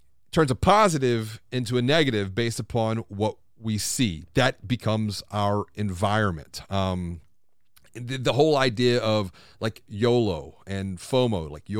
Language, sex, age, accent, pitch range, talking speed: English, male, 40-59, American, 100-130 Hz, 135 wpm